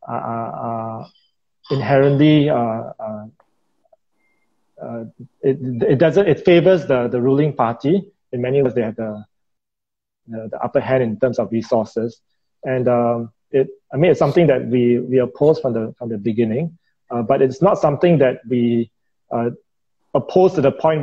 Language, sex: English, male